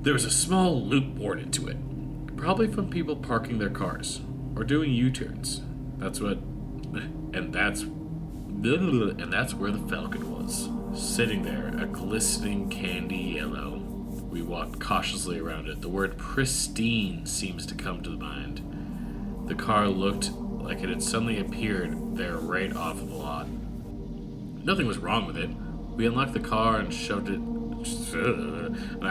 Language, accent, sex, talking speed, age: English, American, male, 150 wpm, 30-49